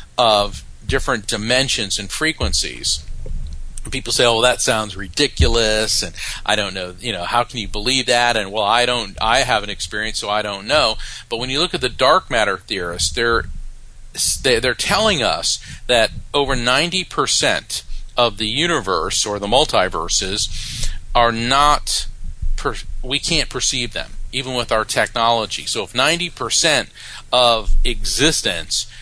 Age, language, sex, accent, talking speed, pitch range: 40-59, English, male, American, 155 wpm, 105-135 Hz